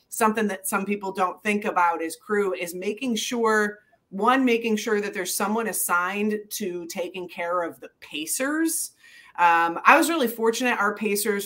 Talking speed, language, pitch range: 170 wpm, English, 175-230 Hz